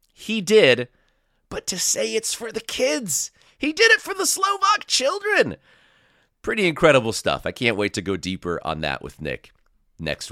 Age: 30-49